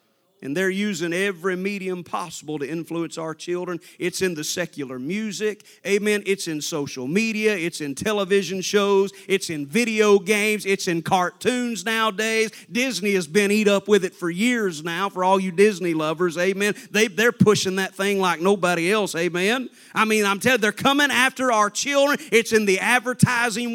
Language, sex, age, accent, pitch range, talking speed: English, male, 40-59, American, 195-245 Hz, 180 wpm